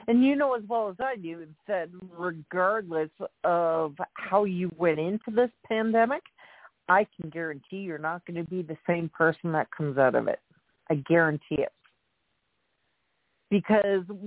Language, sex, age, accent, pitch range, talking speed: English, female, 50-69, American, 165-225 Hz, 155 wpm